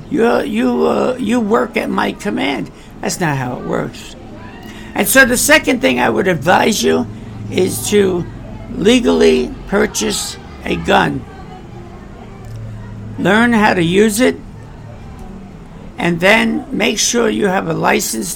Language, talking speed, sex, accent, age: English, 135 wpm, male, American, 60-79